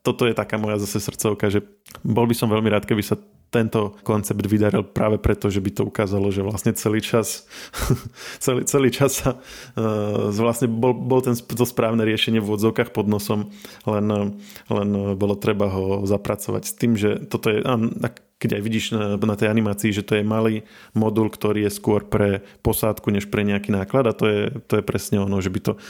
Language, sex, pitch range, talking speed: Slovak, male, 100-110 Hz, 195 wpm